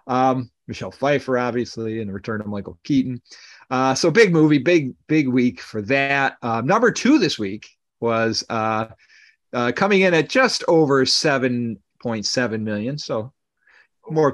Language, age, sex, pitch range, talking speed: English, 40-59, male, 110-145 Hz, 160 wpm